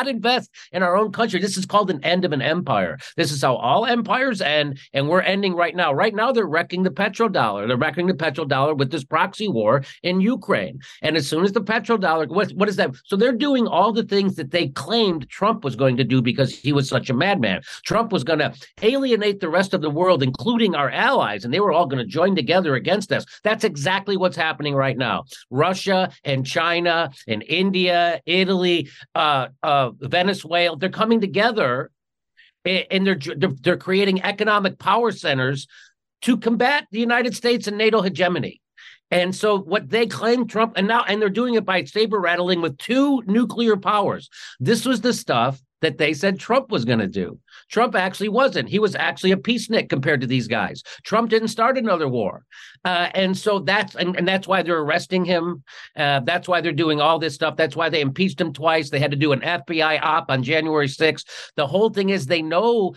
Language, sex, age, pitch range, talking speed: English, male, 50-69, 150-210 Hz, 205 wpm